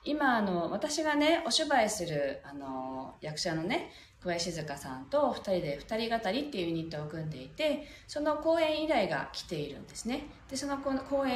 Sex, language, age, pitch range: female, Japanese, 40-59, 165-265 Hz